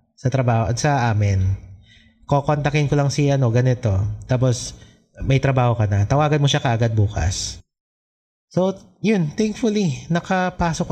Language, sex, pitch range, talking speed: English, male, 115-150 Hz, 130 wpm